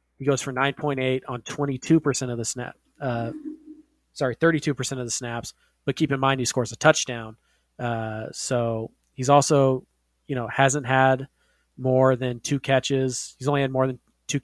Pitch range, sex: 120-140 Hz, male